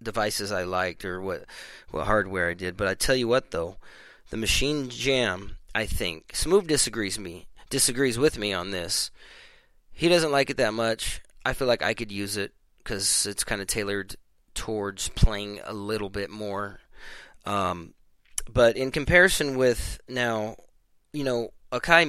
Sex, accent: male, American